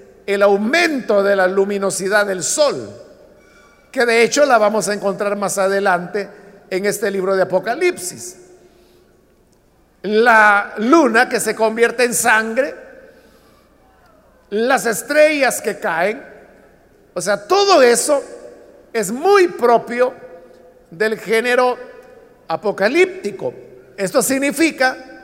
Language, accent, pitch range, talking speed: Spanish, Mexican, 205-265 Hz, 105 wpm